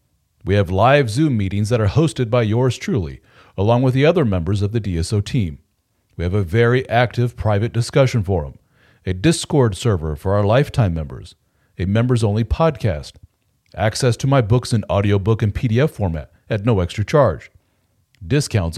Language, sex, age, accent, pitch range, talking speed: English, male, 40-59, American, 95-130 Hz, 165 wpm